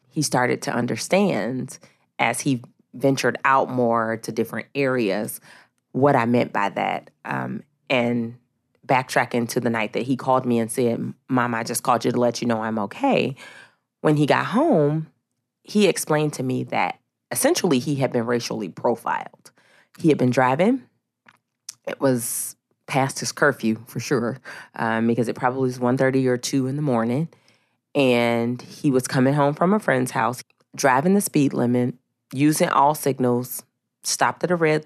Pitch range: 120-140 Hz